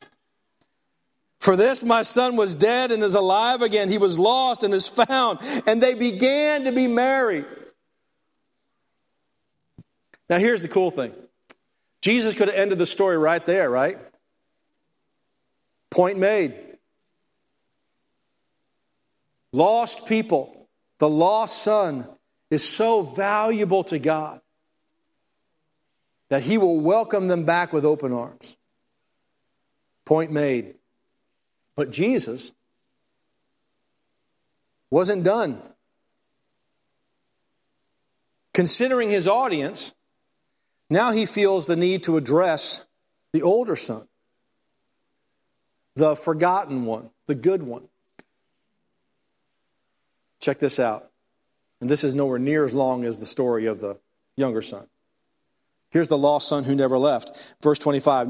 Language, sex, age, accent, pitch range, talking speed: English, male, 50-69, American, 150-220 Hz, 110 wpm